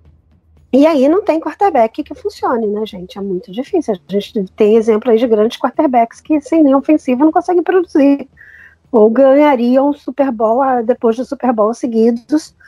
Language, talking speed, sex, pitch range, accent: Portuguese, 170 wpm, female, 220-280 Hz, Brazilian